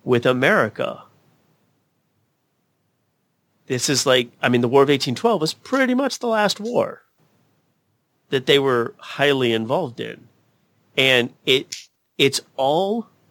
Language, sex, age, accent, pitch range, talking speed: English, male, 40-59, American, 115-165 Hz, 120 wpm